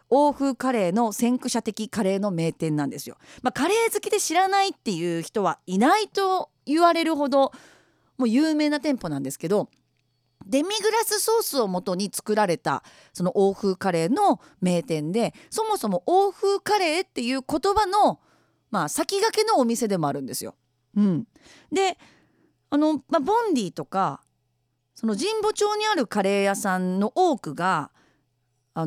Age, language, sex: 40-59, Japanese, female